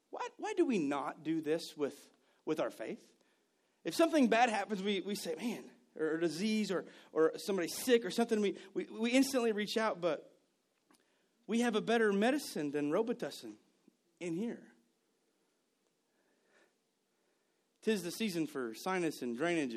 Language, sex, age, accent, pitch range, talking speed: English, male, 30-49, American, 140-235 Hz, 155 wpm